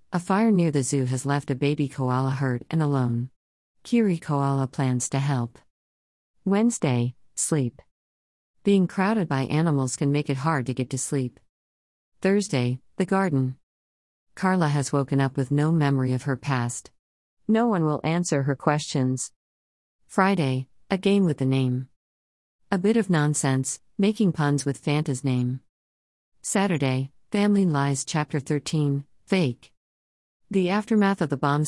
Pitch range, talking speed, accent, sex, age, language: 125-165 Hz, 145 wpm, American, female, 50-69, English